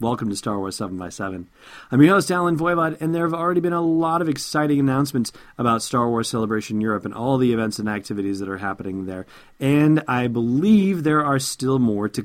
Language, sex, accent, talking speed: English, male, American, 210 wpm